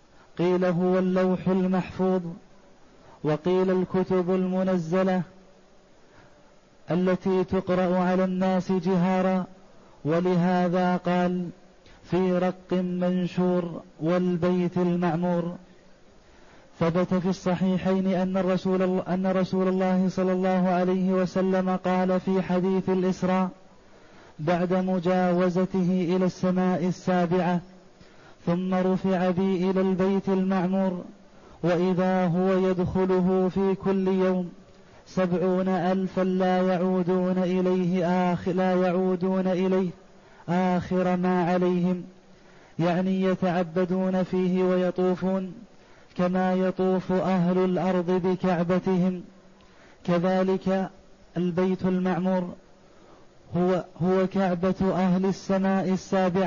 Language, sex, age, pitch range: Arabic, male, 30-49, 180-185 Hz